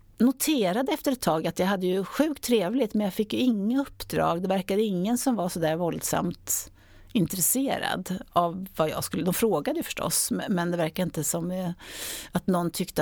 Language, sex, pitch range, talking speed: Swedish, female, 175-230 Hz, 185 wpm